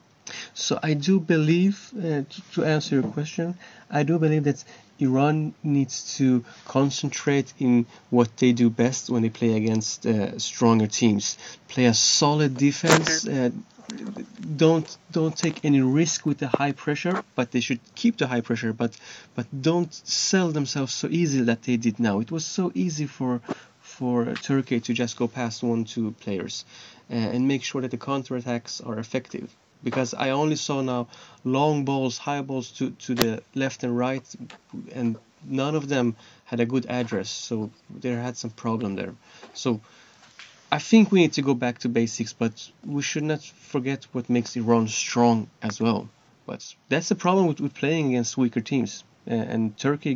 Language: English